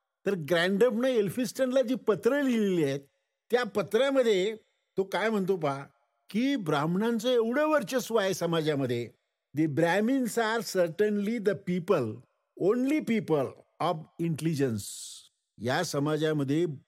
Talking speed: 105 wpm